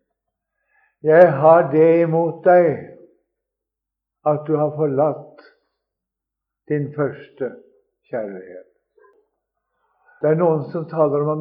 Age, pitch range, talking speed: 60-79, 150-240 Hz, 105 wpm